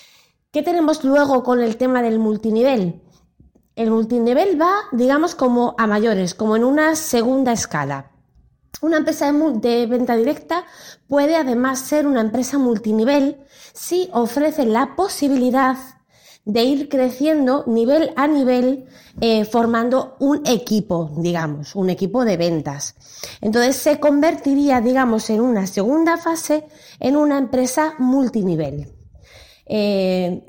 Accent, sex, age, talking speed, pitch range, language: Spanish, female, 20-39, 130 wpm, 215-295 Hz, Spanish